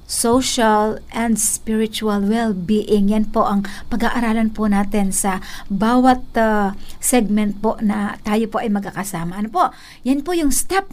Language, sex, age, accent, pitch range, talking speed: Filipino, female, 50-69, native, 205-260 Hz, 145 wpm